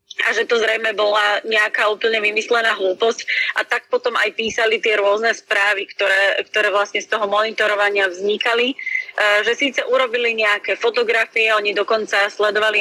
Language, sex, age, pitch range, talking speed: Slovak, female, 30-49, 205-235 Hz, 155 wpm